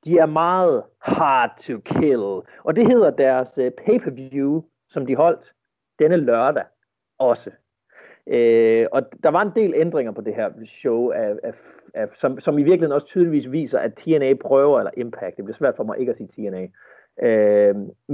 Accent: native